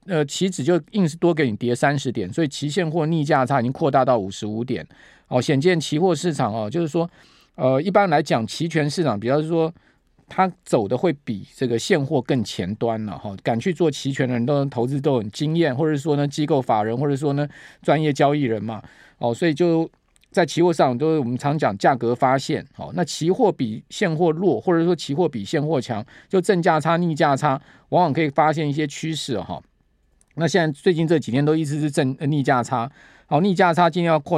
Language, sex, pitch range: Chinese, male, 130-165 Hz